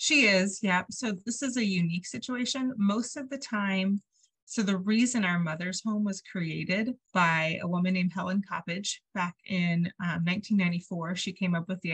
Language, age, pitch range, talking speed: English, 30-49, 170-200 Hz, 180 wpm